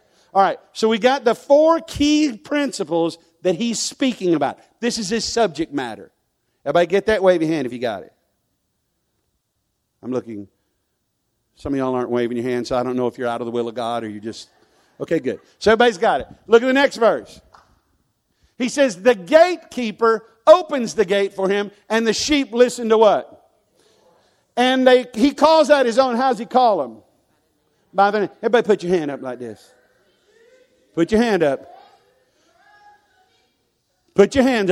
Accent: American